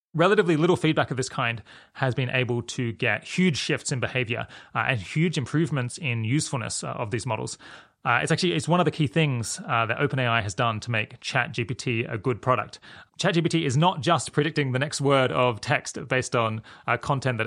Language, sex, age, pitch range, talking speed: English, male, 30-49, 115-150 Hz, 200 wpm